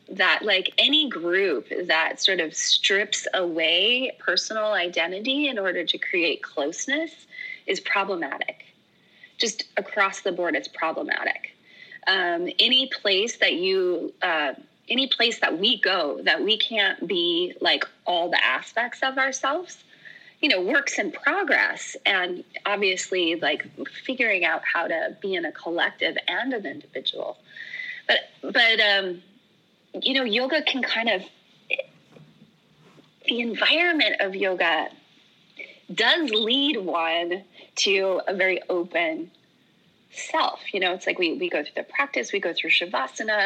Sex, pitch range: female, 195-325 Hz